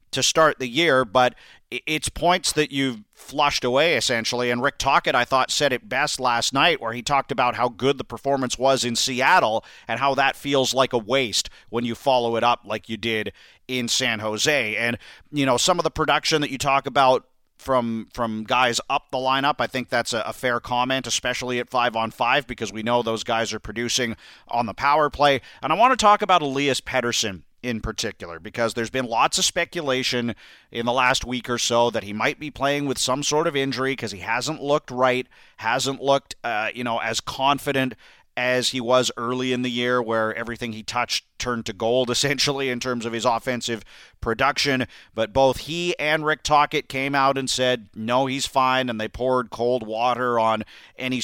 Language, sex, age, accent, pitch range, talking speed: English, male, 40-59, American, 115-135 Hz, 205 wpm